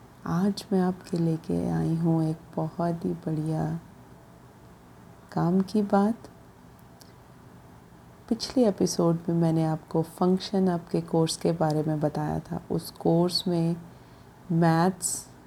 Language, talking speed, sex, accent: Hindi, 115 wpm, female, native